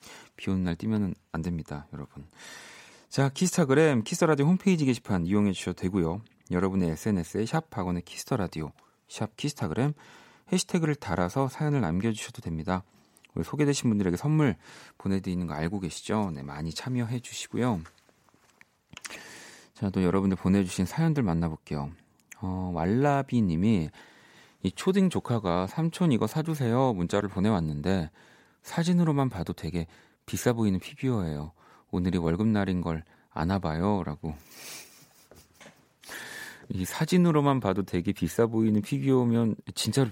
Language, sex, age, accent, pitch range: Korean, male, 40-59, native, 90-135 Hz